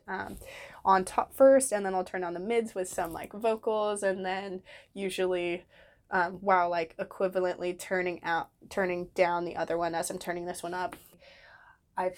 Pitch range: 175-200 Hz